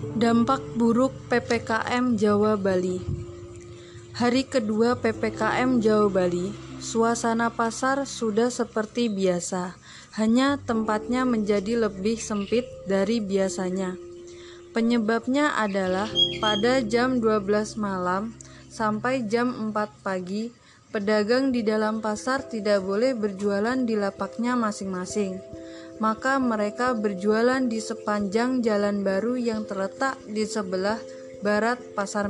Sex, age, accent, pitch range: female, 20-39, native, 195-235 Hz